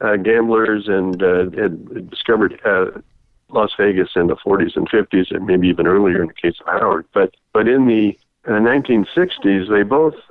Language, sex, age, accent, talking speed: English, male, 60-79, American, 180 wpm